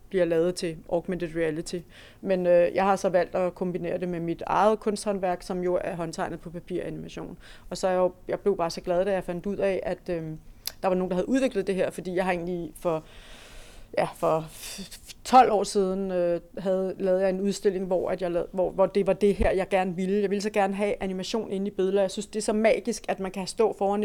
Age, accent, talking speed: 30-49, native, 245 wpm